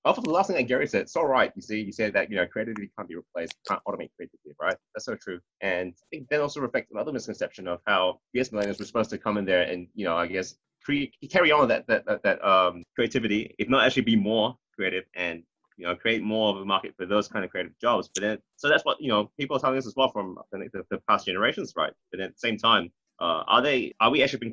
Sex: male